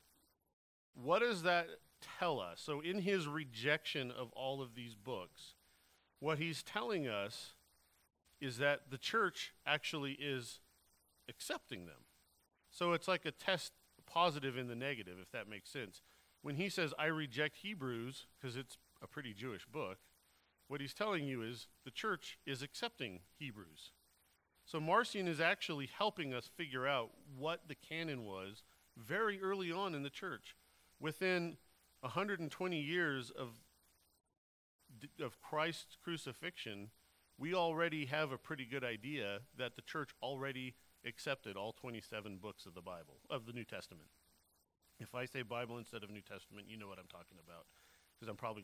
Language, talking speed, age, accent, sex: English, 155 wpm, 40-59, American, male